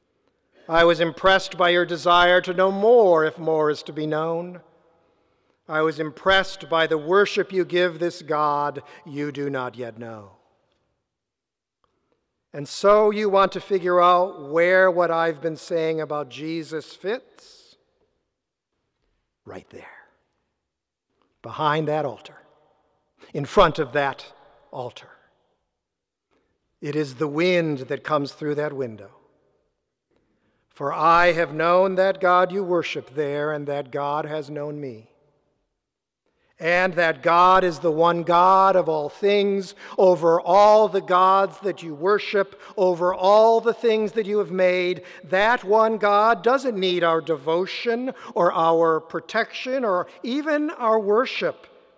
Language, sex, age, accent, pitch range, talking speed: English, male, 50-69, American, 155-195 Hz, 135 wpm